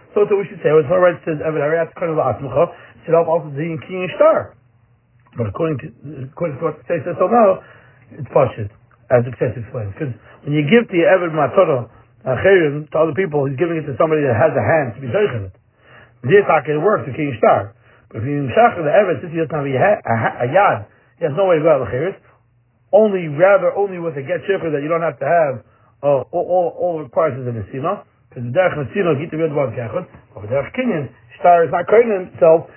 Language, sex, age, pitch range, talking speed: English, male, 60-79, 125-170 Hz, 210 wpm